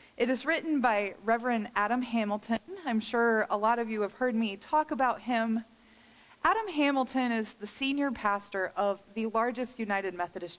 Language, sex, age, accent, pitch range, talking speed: English, female, 30-49, American, 200-240 Hz, 170 wpm